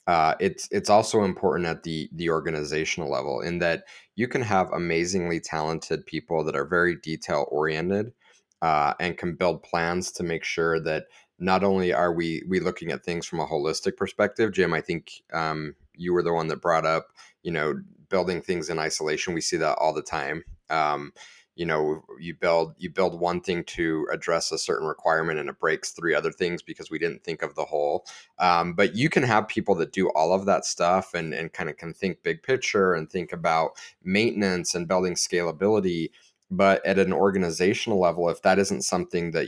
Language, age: English, 30-49